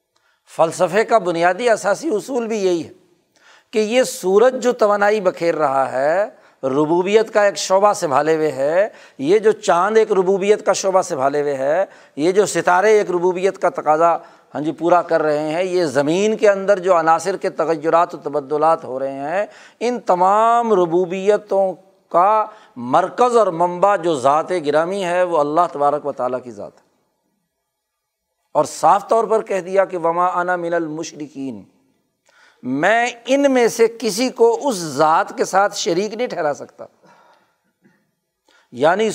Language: Urdu